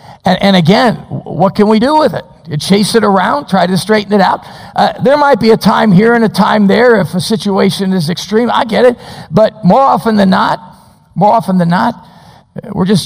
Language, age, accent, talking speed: English, 50-69, American, 210 wpm